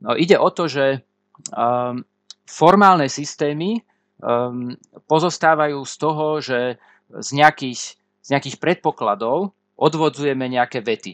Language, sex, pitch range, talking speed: Slovak, male, 120-155 Hz, 90 wpm